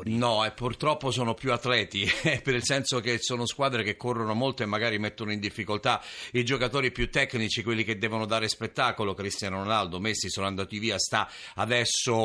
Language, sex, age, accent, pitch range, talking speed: Italian, male, 50-69, native, 110-135 Hz, 185 wpm